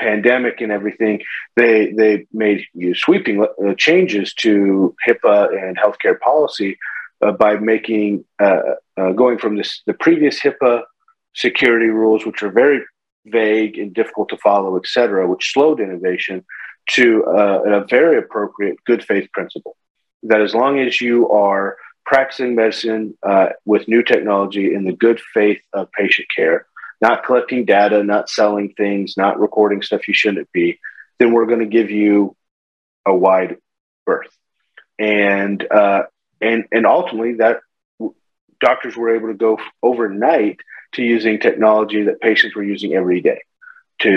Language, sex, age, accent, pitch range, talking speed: English, male, 40-59, American, 100-120 Hz, 150 wpm